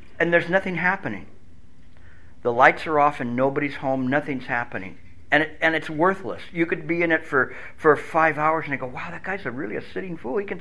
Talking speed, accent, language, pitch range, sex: 225 wpm, American, English, 110-170 Hz, male